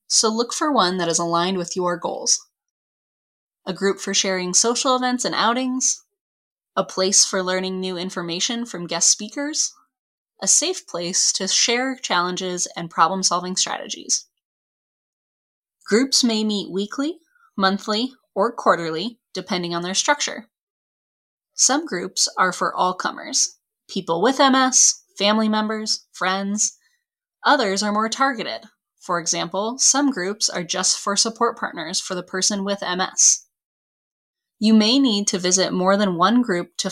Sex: female